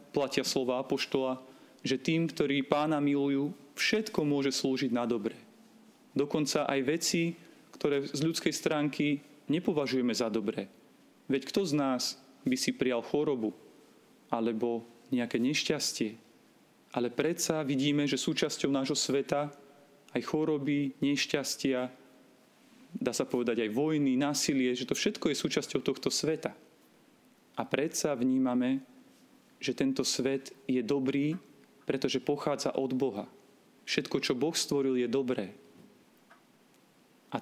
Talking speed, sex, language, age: 120 wpm, male, Slovak, 40-59